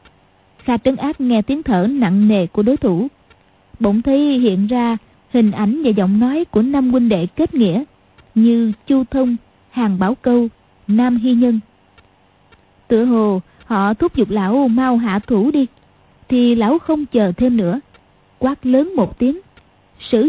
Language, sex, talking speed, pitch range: Vietnamese, female, 165 wpm, 210-270 Hz